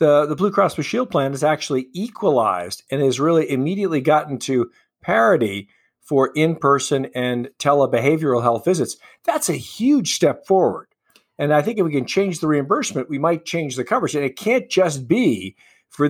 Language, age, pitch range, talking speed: English, 50-69, 125-155 Hz, 185 wpm